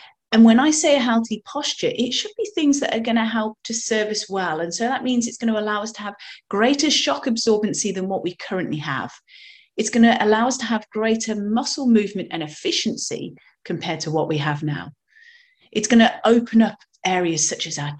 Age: 30-49